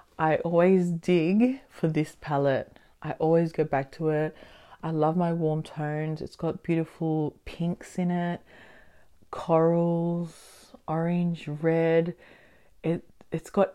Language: English